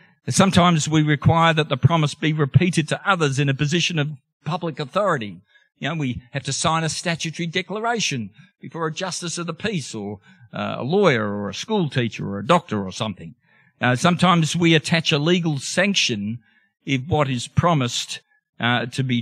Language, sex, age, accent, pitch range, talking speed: English, male, 50-69, Australian, 120-170 Hz, 180 wpm